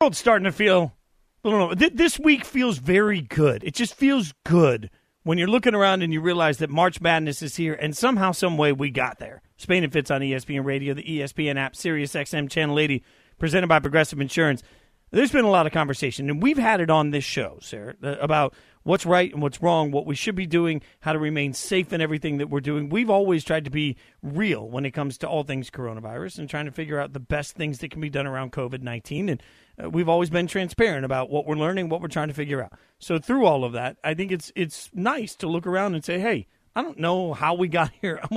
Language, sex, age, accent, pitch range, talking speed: English, male, 40-59, American, 145-185 Hz, 240 wpm